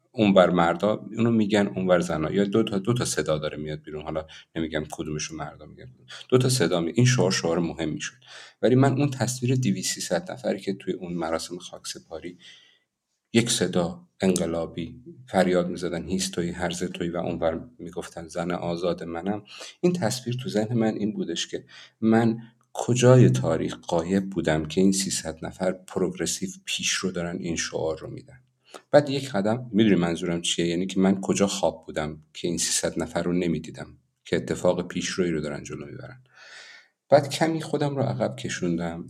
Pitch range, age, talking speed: 85-120 Hz, 50-69, 175 wpm